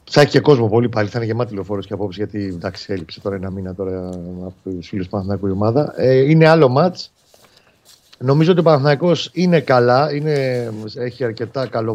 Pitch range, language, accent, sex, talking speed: 100-135 Hz, Greek, native, male, 190 wpm